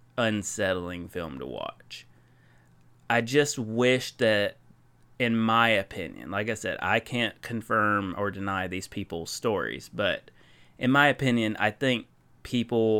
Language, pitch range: English, 100-130 Hz